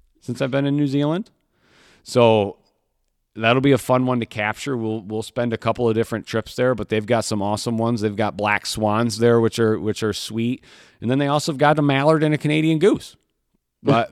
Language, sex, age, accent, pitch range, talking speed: English, male, 40-59, American, 100-125 Hz, 220 wpm